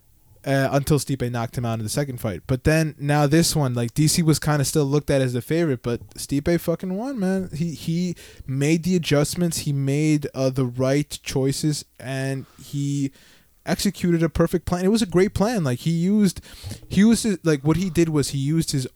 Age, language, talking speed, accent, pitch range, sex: 20-39, English, 210 wpm, American, 125-155 Hz, male